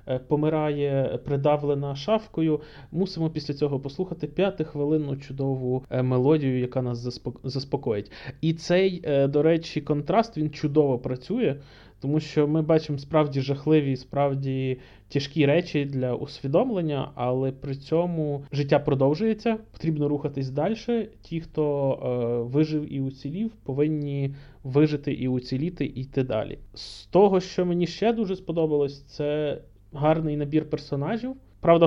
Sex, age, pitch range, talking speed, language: male, 20-39, 135-165 Hz, 125 wpm, Ukrainian